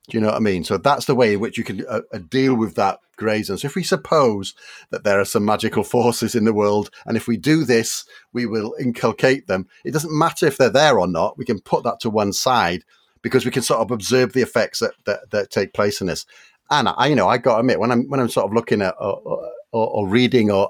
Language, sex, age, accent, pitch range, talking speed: English, male, 40-59, British, 100-135 Hz, 265 wpm